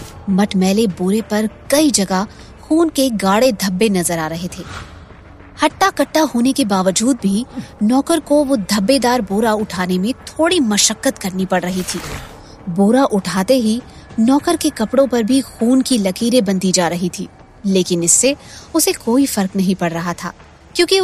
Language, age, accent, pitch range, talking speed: Hindi, 20-39, native, 190-270 Hz, 165 wpm